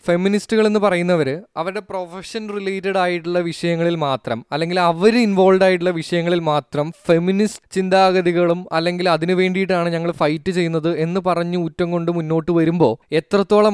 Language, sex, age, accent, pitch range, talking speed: Malayalam, male, 20-39, native, 145-180 Hz, 130 wpm